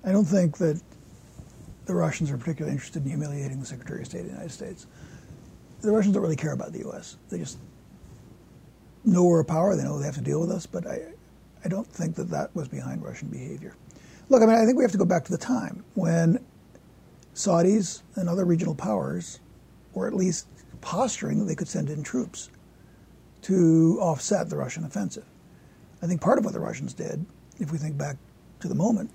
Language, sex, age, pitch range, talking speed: English, male, 60-79, 160-205 Hz, 210 wpm